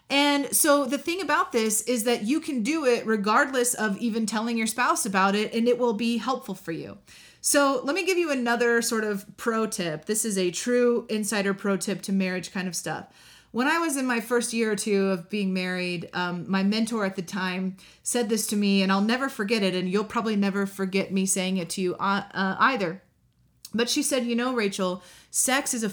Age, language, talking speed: 30-49, English, 225 wpm